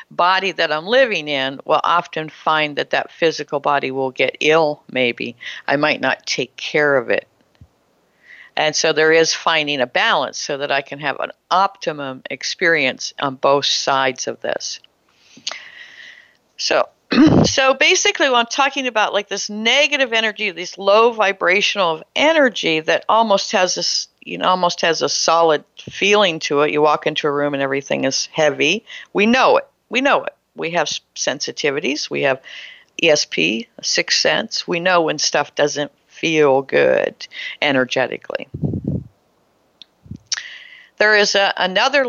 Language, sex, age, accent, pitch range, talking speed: English, female, 60-79, American, 150-225 Hz, 150 wpm